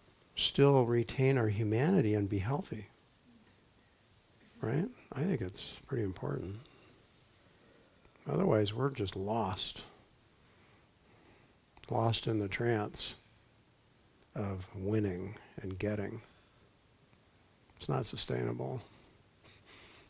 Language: English